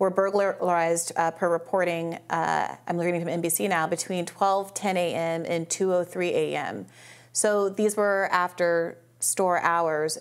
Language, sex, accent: English, female, American